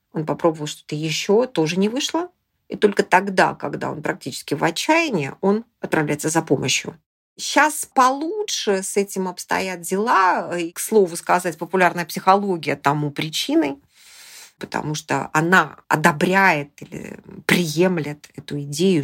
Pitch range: 165-220 Hz